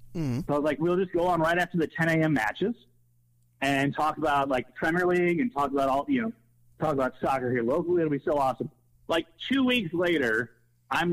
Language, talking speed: English, 215 wpm